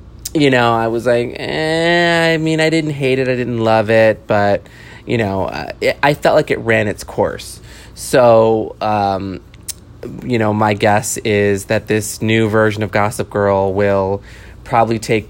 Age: 20-39